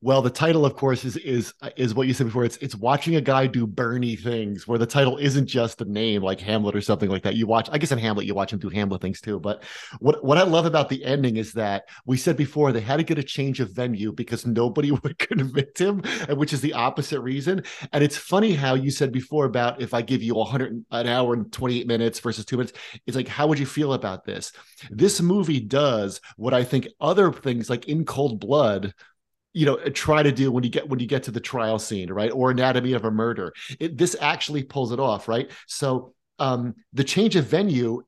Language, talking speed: English, 240 wpm